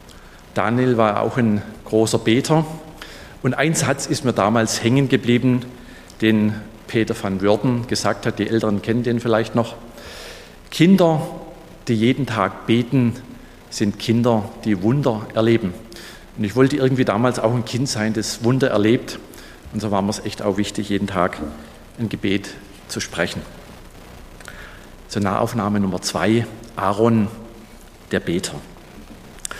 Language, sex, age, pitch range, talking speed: German, male, 40-59, 105-130 Hz, 140 wpm